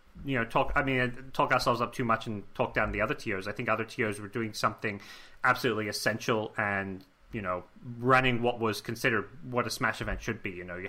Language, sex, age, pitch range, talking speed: English, male, 30-49, 100-120 Hz, 225 wpm